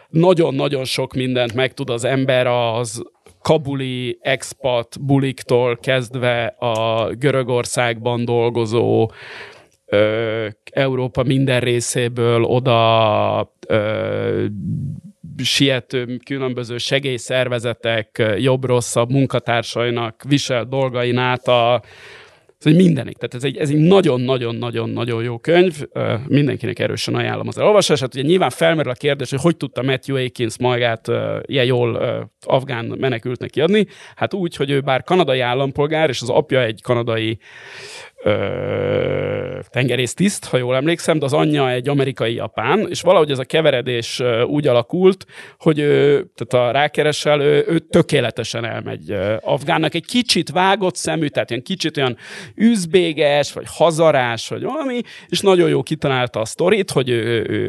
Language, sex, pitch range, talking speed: Hungarian, male, 120-150 Hz, 125 wpm